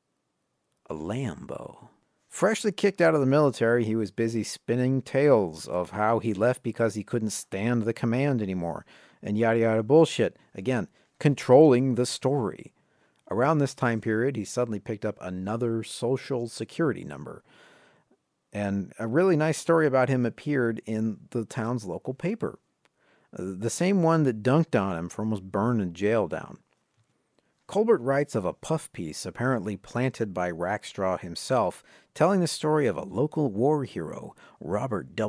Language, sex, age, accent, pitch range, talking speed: English, male, 50-69, American, 105-140 Hz, 150 wpm